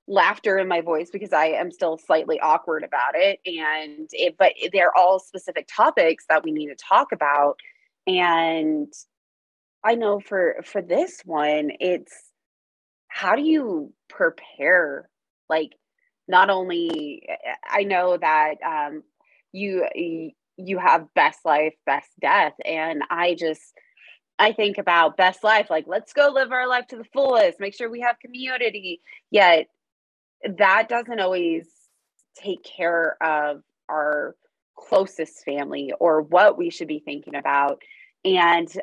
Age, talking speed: 20-39, 140 wpm